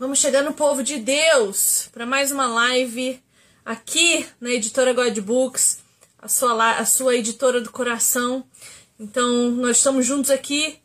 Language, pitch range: Portuguese, 245-280 Hz